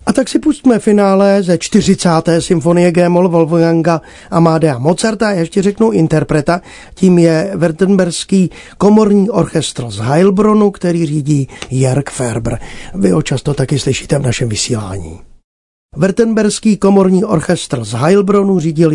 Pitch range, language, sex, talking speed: 155-200 Hz, Czech, male, 130 wpm